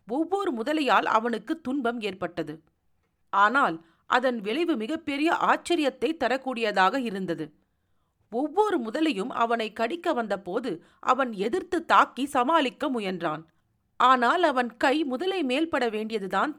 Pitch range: 190-280 Hz